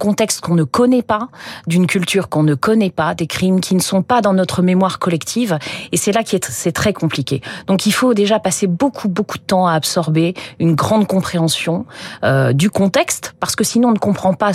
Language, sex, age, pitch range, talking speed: French, female, 40-59, 160-205 Hz, 215 wpm